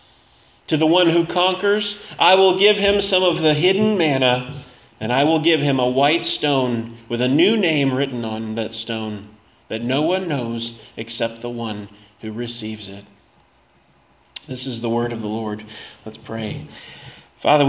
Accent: American